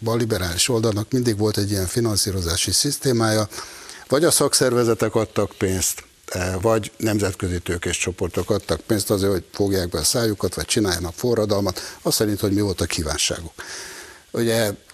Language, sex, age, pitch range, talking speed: Hungarian, male, 60-79, 100-120 Hz, 150 wpm